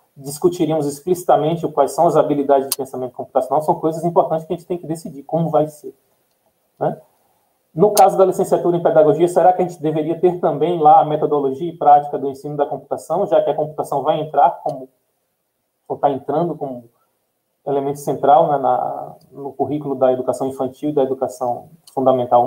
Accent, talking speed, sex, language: Brazilian, 180 wpm, male, Portuguese